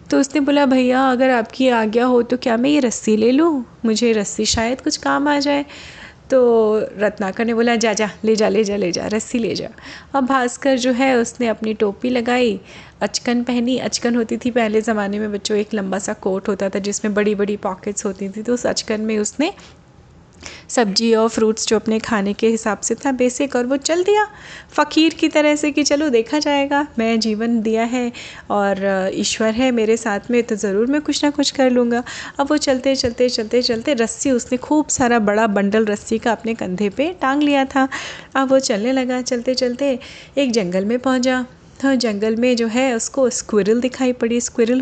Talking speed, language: 205 wpm, Hindi